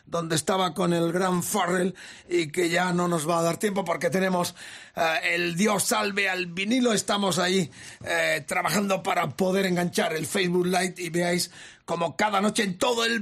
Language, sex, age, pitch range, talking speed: Spanish, male, 40-59, 170-210 Hz, 185 wpm